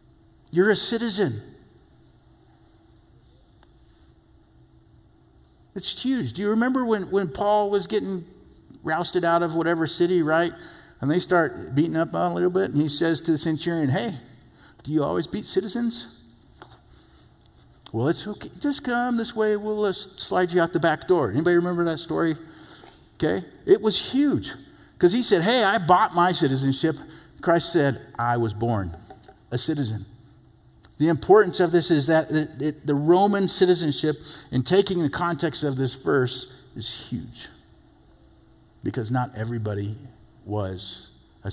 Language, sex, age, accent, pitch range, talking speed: English, male, 50-69, American, 120-175 Hz, 145 wpm